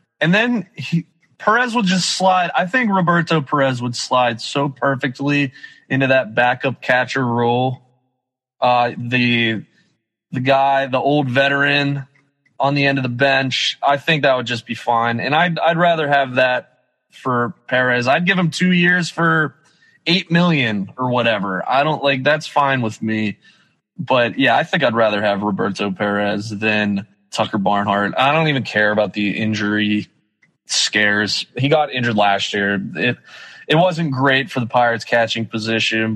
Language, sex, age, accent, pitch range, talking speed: English, male, 20-39, American, 115-160 Hz, 165 wpm